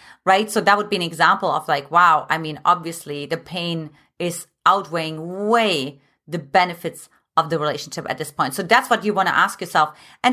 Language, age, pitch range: English, 30-49, 160-210 Hz